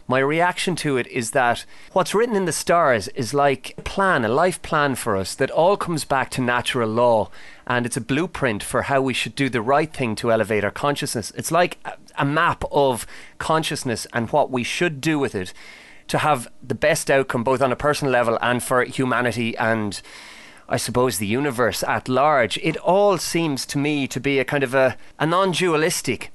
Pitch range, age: 125-165 Hz, 30-49